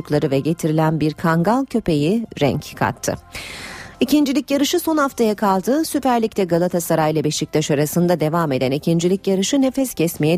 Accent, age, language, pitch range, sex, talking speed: native, 40-59, Turkish, 155-210 Hz, female, 140 wpm